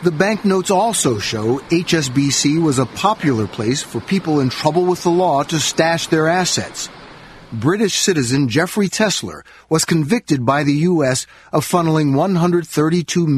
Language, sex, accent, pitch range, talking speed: English, male, American, 140-180 Hz, 145 wpm